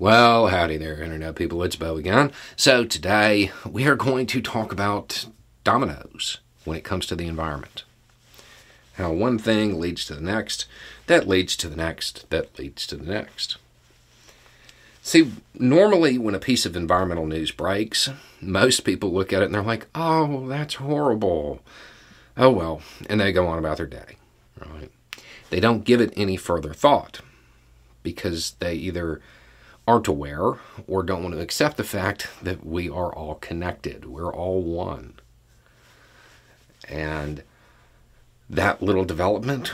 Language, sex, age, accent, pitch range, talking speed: English, male, 40-59, American, 80-105 Hz, 155 wpm